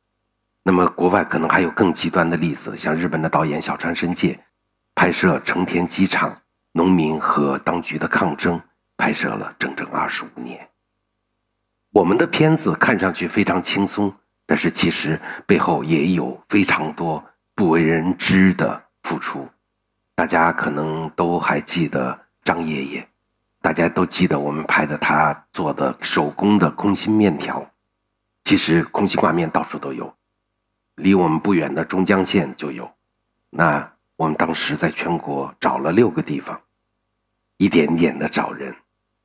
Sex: male